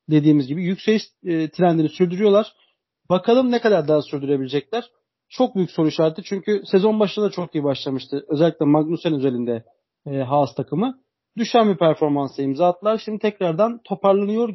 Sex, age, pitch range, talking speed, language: male, 40-59, 155-195 Hz, 135 wpm, Turkish